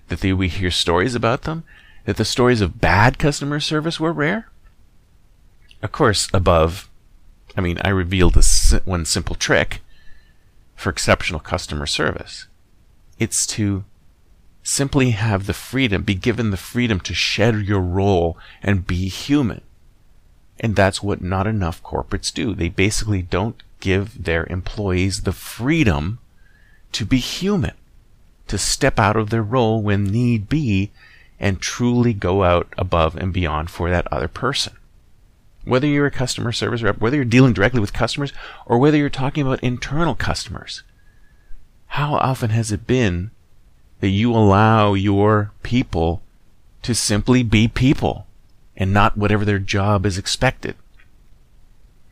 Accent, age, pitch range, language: American, 40-59, 90-120 Hz, English